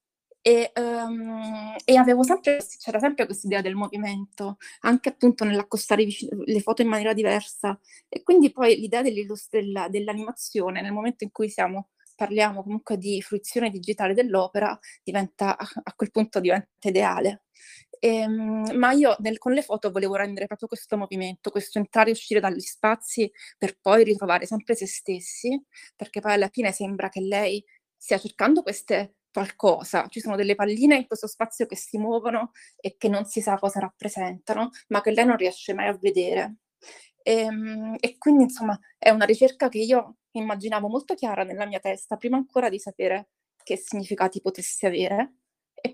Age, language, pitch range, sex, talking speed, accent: 20-39, Italian, 200-235 Hz, female, 165 wpm, native